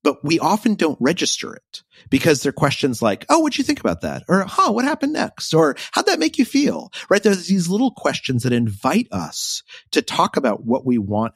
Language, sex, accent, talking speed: English, male, American, 215 wpm